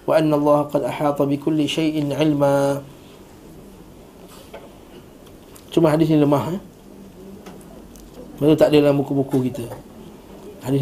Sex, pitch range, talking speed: male, 145-165 Hz, 105 wpm